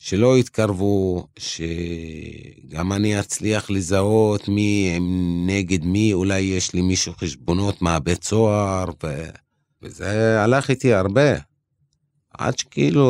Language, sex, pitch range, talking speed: Hebrew, male, 90-120 Hz, 110 wpm